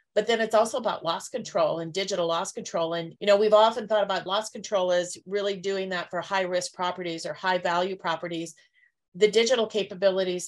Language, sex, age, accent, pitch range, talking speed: English, female, 40-59, American, 180-210 Hz, 200 wpm